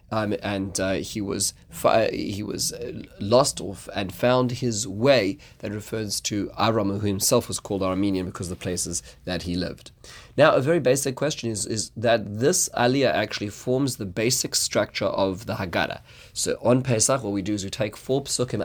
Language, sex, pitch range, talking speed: English, male, 105-130 Hz, 195 wpm